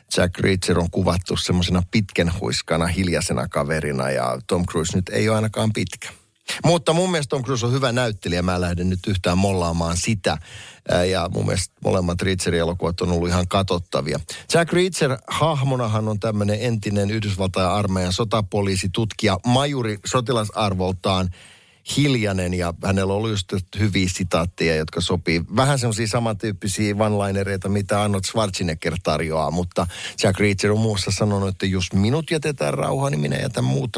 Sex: male